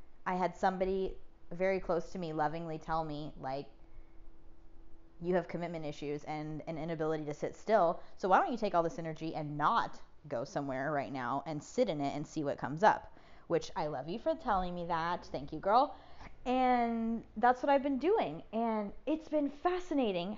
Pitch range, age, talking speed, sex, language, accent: 145-215 Hz, 20-39, 190 wpm, female, English, American